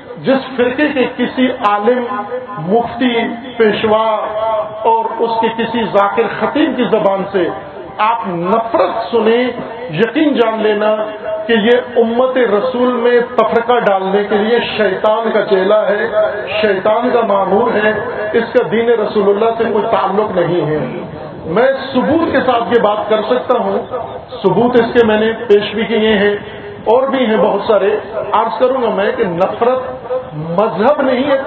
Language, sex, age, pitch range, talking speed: Urdu, male, 50-69, 210-240 Hz, 155 wpm